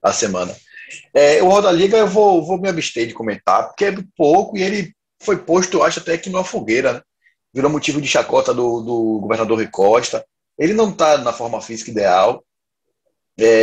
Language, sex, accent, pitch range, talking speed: Portuguese, male, Brazilian, 115-175 Hz, 190 wpm